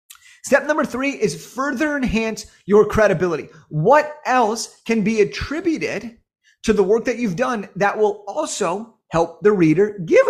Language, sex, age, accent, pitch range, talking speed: English, male, 30-49, American, 185-240 Hz, 150 wpm